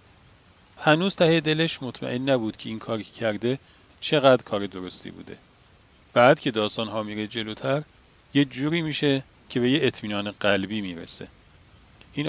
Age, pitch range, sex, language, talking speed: 40-59, 105-135 Hz, male, Persian, 145 wpm